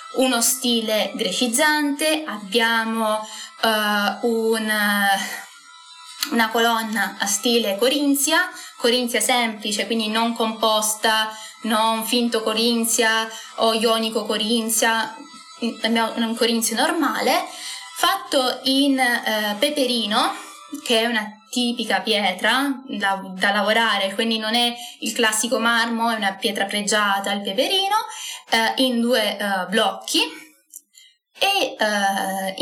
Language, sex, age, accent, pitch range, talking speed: Italian, female, 20-39, native, 215-270 Hz, 105 wpm